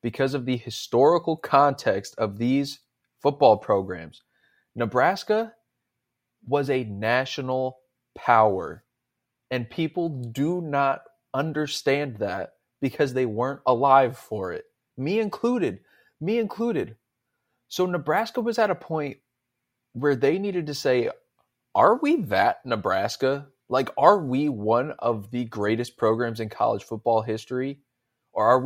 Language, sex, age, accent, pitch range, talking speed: English, male, 20-39, American, 115-145 Hz, 125 wpm